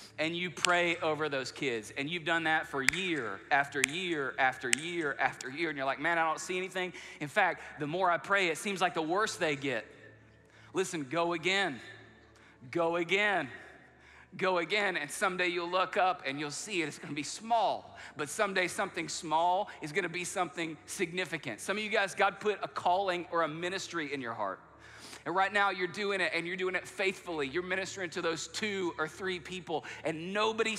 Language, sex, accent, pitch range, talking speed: English, male, American, 155-195 Hz, 200 wpm